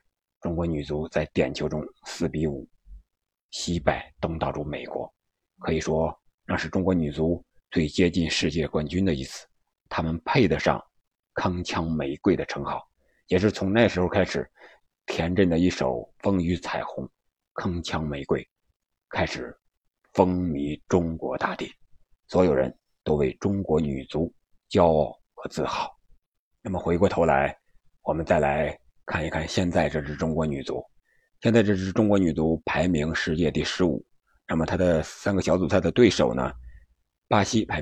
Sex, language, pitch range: male, Chinese, 75-95 Hz